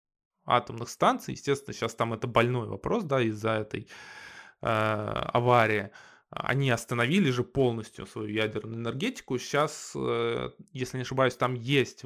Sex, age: male, 20-39